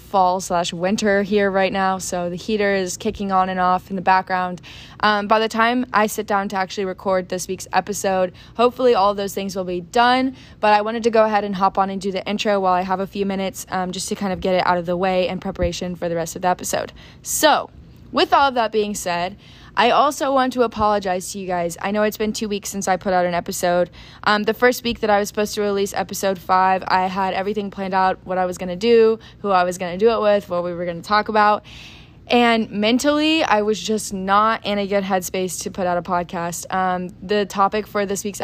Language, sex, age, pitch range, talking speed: English, female, 20-39, 185-210 Hz, 250 wpm